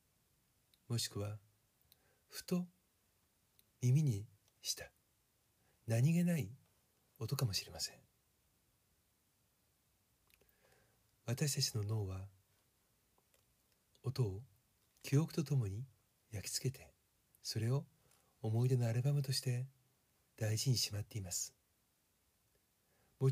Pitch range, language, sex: 100-130 Hz, Japanese, male